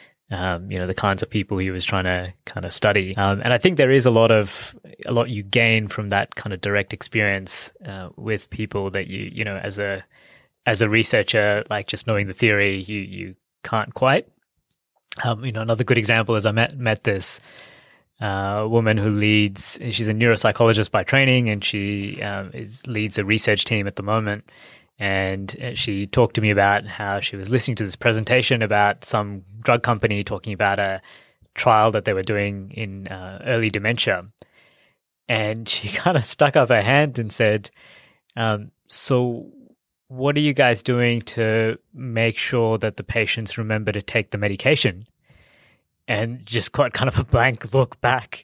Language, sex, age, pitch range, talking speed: English, male, 20-39, 100-120 Hz, 185 wpm